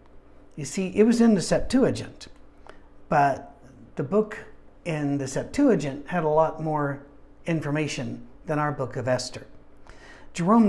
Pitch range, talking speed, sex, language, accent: 140-175 Hz, 135 wpm, male, English, American